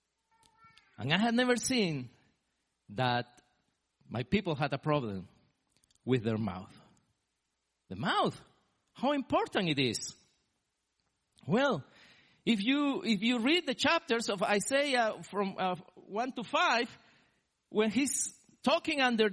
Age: 50-69